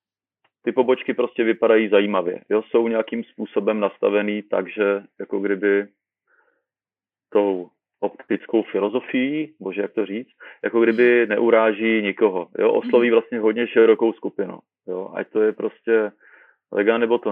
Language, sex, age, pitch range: Czech, male, 30-49, 100-115 Hz